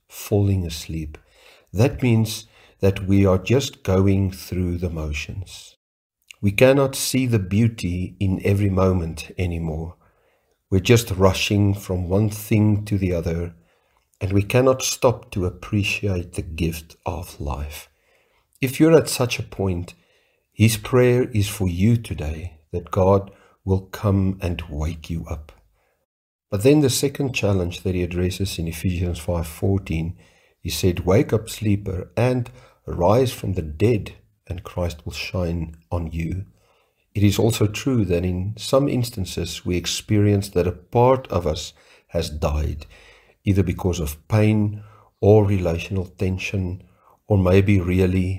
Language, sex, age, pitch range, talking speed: English, male, 50-69, 85-105 Hz, 140 wpm